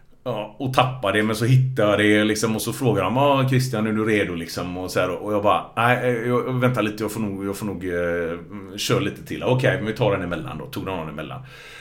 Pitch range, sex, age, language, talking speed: 100-130 Hz, male, 30-49, Swedish, 260 wpm